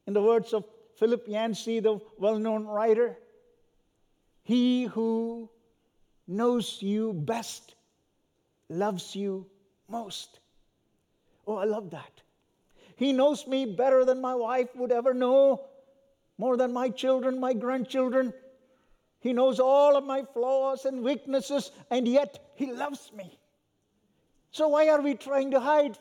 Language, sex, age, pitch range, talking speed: English, male, 50-69, 195-260 Hz, 130 wpm